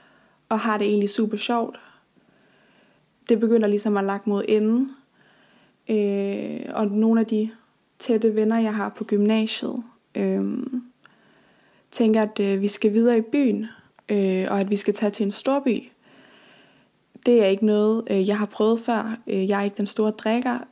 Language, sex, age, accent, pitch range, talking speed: Danish, female, 20-39, native, 205-230 Hz, 165 wpm